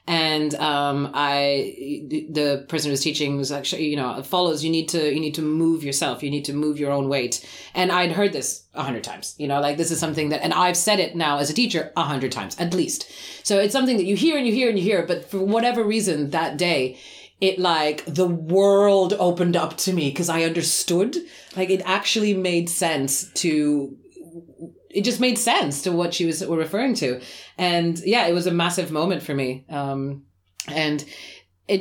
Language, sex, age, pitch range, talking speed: English, female, 30-49, 145-195 Hz, 215 wpm